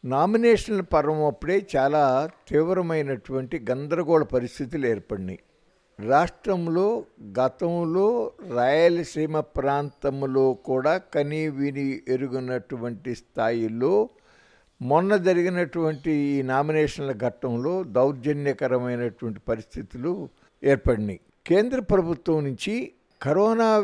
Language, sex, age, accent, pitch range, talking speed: Telugu, male, 60-79, native, 130-180 Hz, 75 wpm